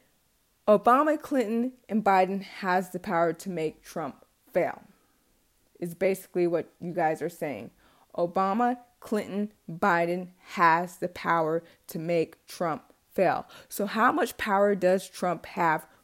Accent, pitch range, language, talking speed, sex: American, 175-230 Hz, English, 130 wpm, female